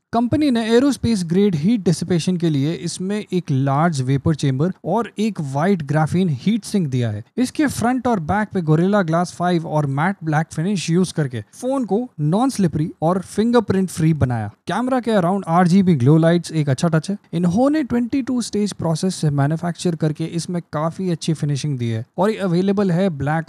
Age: 20-39